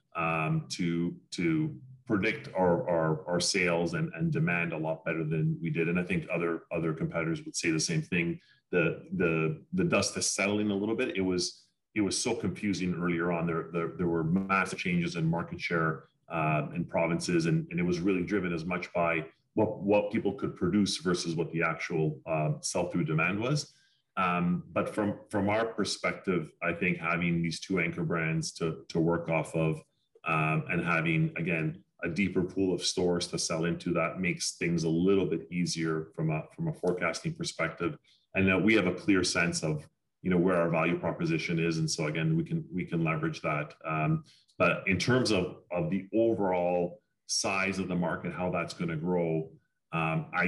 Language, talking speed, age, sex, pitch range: English, 195 wpm, 30-49, male, 85-100 Hz